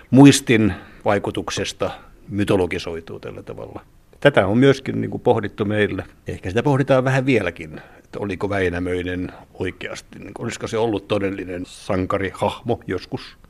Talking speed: 125 wpm